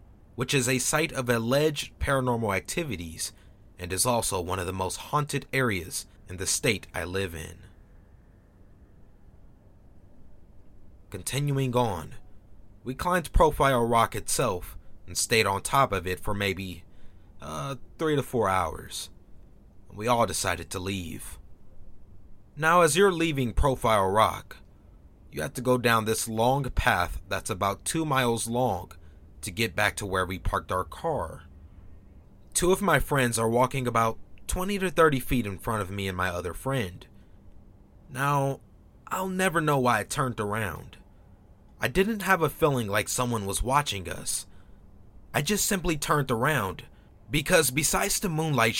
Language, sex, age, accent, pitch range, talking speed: English, male, 30-49, American, 95-135 Hz, 150 wpm